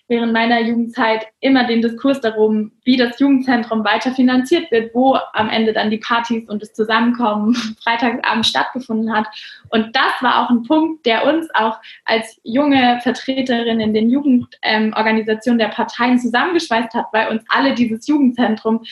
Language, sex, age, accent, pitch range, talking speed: German, female, 20-39, German, 220-255 Hz, 160 wpm